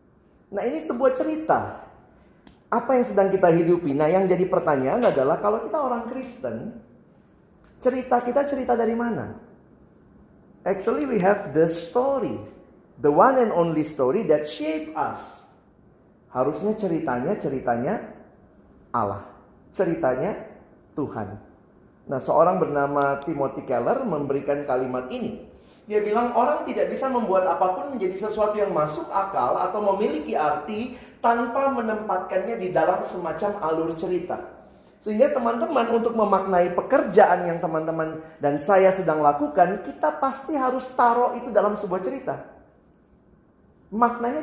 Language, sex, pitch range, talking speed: Indonesian, male, 160-240 Hz, 125 wpm